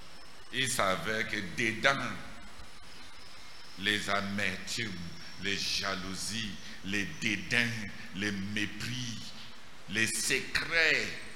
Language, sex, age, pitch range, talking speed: English, male, 60-79, 95-135 Hz, 75 wpm